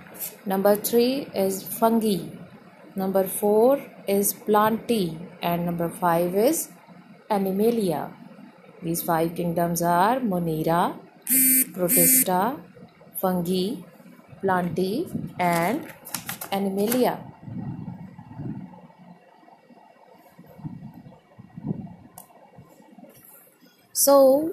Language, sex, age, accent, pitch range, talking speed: English, female, 20-39, Indian, 190-245 Hz, 60 wpm